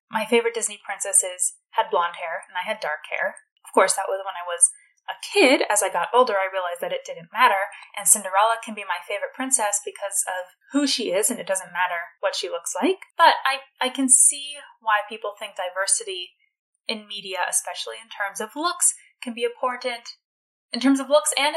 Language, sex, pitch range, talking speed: English, female, 200-290 Hz, 210 wpm